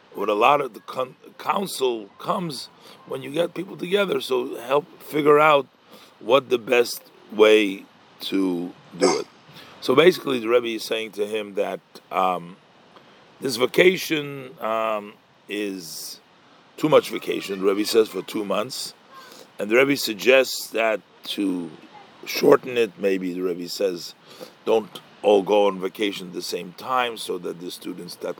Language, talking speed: English, 150 wpm